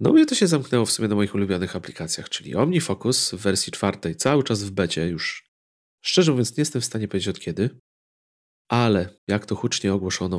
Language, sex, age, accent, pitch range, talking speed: Polish, male, 40-59, native, 90-120 Hz, 200 wpm